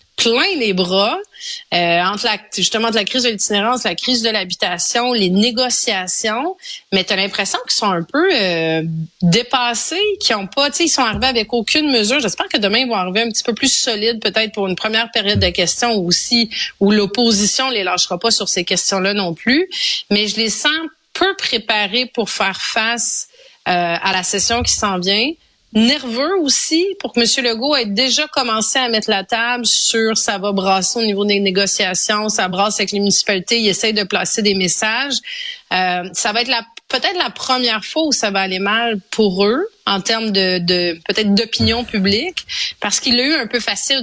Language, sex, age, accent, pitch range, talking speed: French, female, 30-49, Canadian, 195-250 Hz, 200 wpm